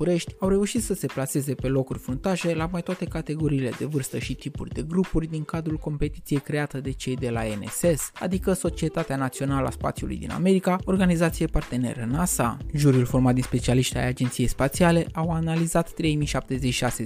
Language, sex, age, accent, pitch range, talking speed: Romanian, male, 20-39, native, 130-170 Hz, 165 wpm